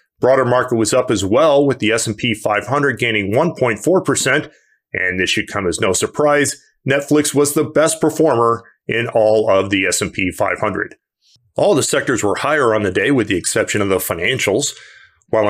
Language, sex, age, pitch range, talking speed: English, male, 40-59, 110-135 Hz, 175 wpm